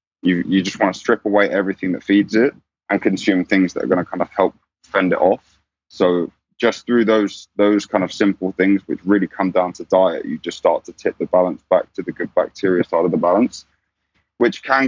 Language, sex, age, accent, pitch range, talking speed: English, male, 20-39, British, 90-100 Hz, 230 wpm